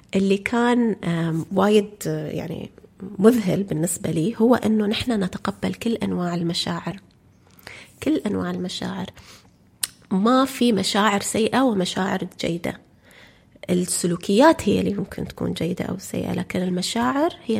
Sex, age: female, 30-49